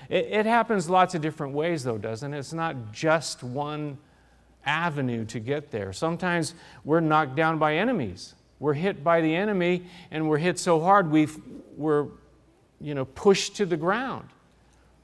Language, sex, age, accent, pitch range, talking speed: English, male, 40-59, American, 145-185 Hz, 160 wpm